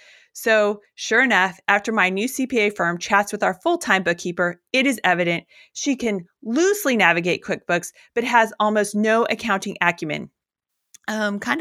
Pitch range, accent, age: 185-250 Hz, American, 30-49